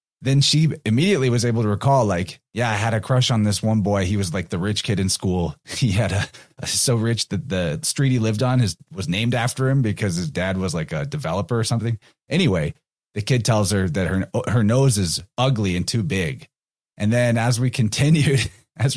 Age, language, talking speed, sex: 30-49, English, 225 wpm, male